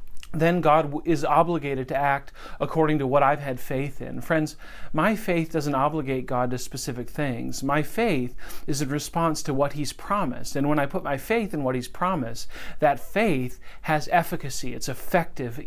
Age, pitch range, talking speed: 40-59, 140-175 Hz, 180 wpm